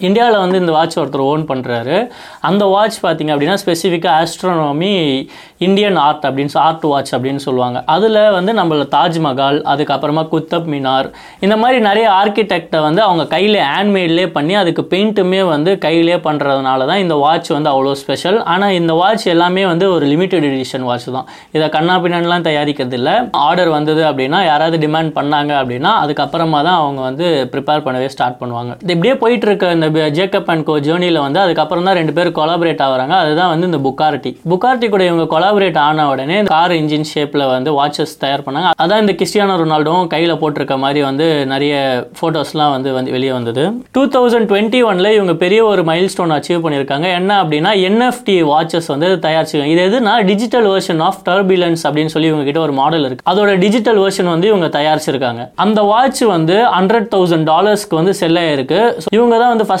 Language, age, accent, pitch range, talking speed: Tamil, 20-39, native, 145-195 Hz, 85 wpm